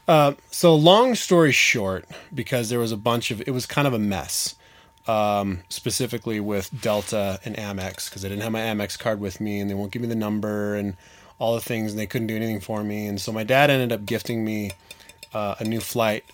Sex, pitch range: male, 100-130 Hz